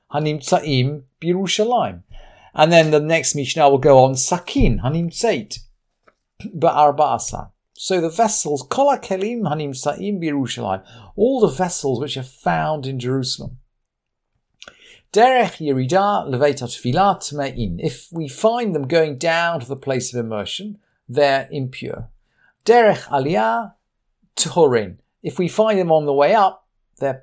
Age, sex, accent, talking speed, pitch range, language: 50-69, male, British, 110 wpm, 130-185 Hz, English